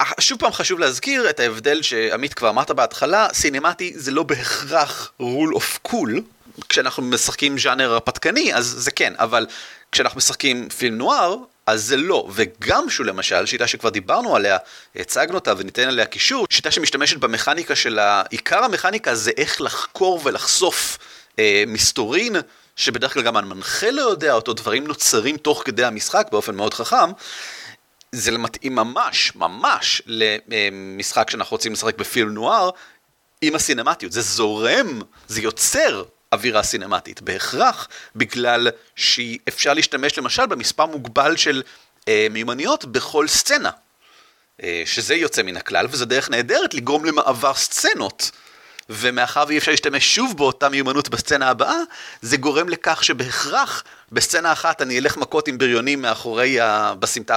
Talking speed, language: 140 wpm, Hebrew